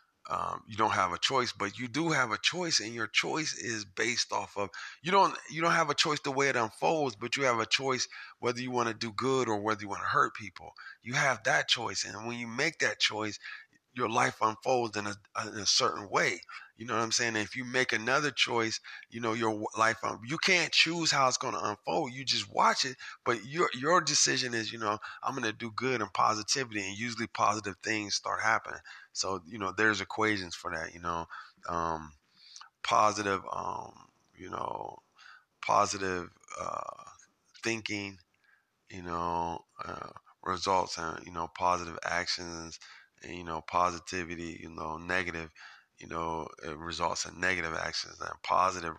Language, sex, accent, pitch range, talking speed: English, male, American, 90-120 Hz, 185 wpm